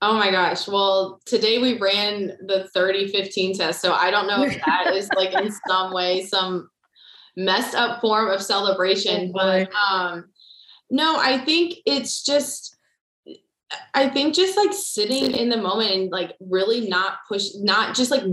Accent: American